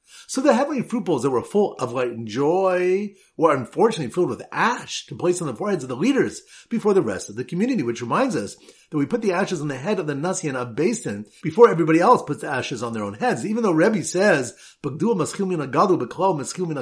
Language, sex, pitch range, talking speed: English, male, 140-205 Hz, 225 wpm